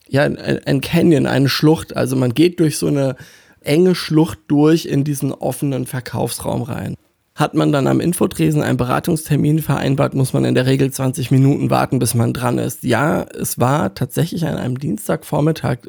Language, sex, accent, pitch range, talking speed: German, male, German, 125-155 Hz, 175 wpm